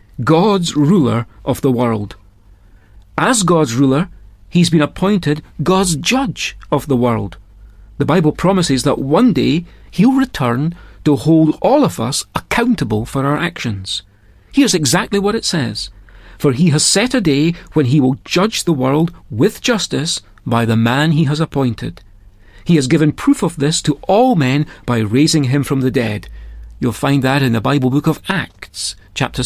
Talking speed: 170 wpm